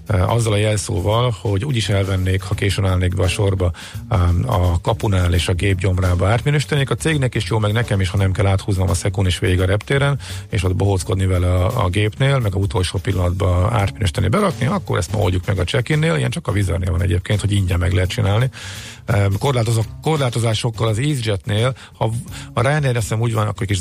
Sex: male